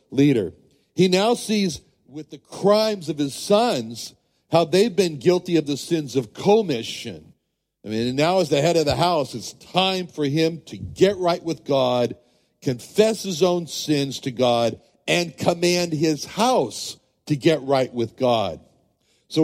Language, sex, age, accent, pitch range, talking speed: English, male, 60-79, American, 130-180 Hz, 165 wpm